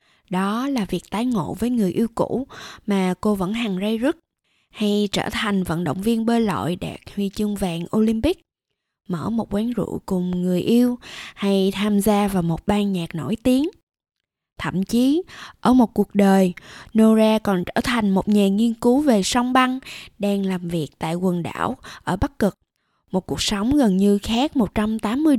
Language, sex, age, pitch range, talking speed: Vietnamese, female, 20-39, 190-235 Hz, 180 wpm